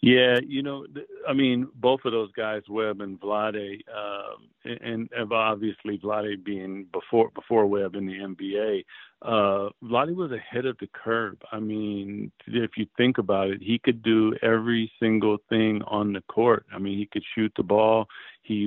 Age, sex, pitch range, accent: 50-69, male, 105-125 Hz, American